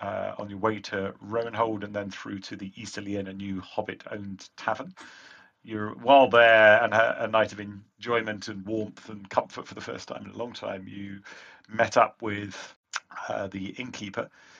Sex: male